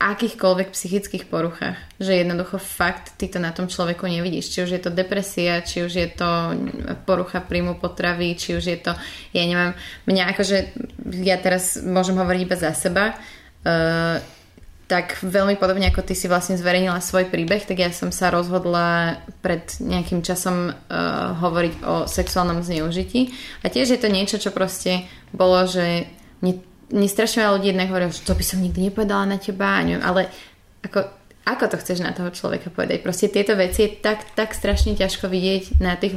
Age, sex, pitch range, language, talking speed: 20-39, female, 175-195 Hz, Slovak, 170 wpm